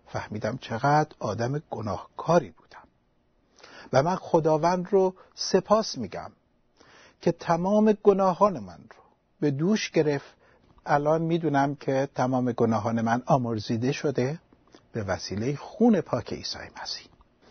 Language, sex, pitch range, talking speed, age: Persian, male, 115-165 Hz, 115 wpm, 60-79